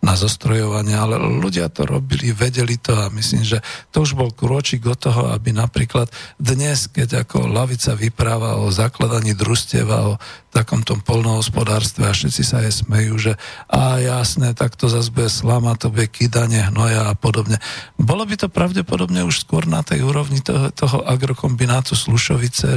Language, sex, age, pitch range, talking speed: Slovak, male, 50-69, 110-135 Hz, 165 wpm